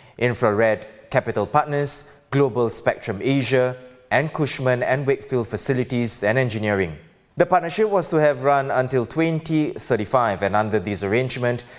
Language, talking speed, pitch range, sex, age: English, 125 wpm, 110-145 Hz, male, 20-39